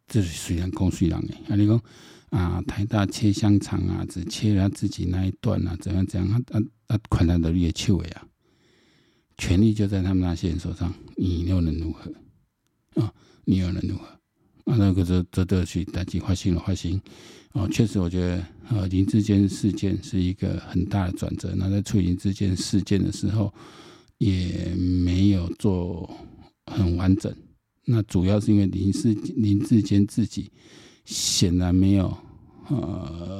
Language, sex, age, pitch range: Chinese, male, 50-69, 90-105 Hz